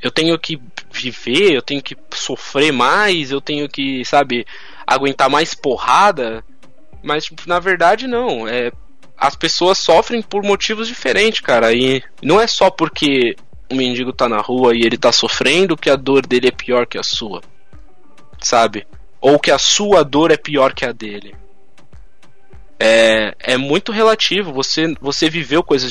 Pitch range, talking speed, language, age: 120-165 Hz, 160 wpm, Portuguese, 10-29